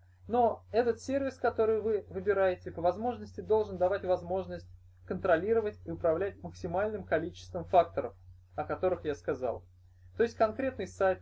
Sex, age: male, 20-39